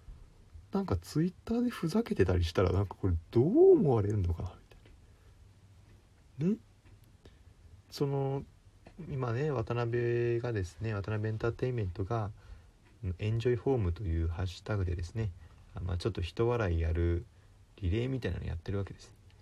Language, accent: Japanese, native